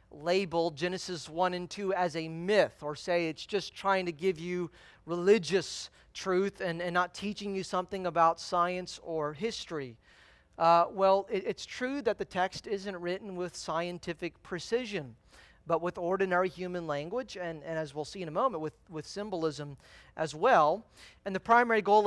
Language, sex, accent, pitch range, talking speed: English, male, American, 170-215 Hz, 170 wpm